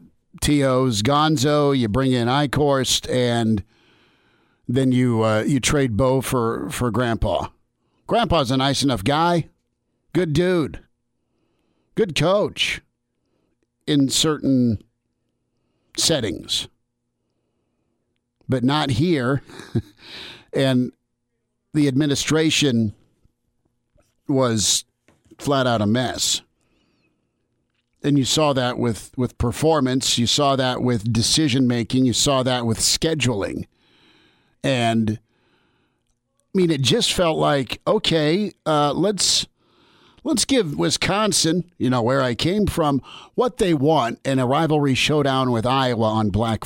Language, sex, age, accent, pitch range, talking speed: English, male, 50-69, American, 120-150 Hz, 110 wpm